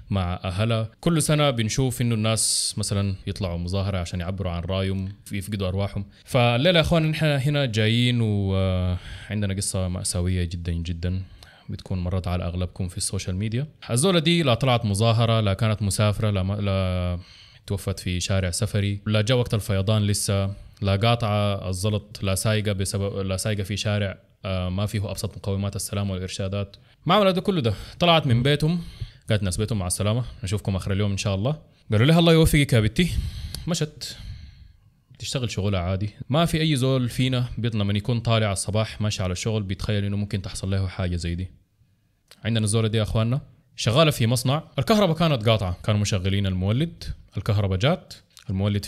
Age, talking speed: 20-39, 160 wpm